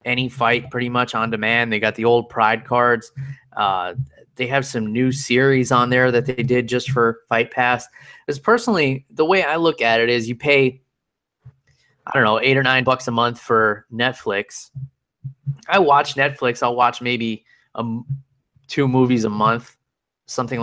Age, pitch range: 20-39, 115-135 Hz